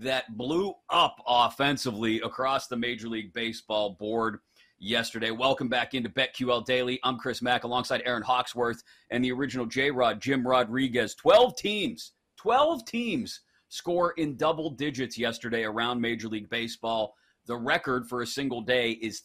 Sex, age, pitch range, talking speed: male, 30-49, 115-145 Hz, 150 wpm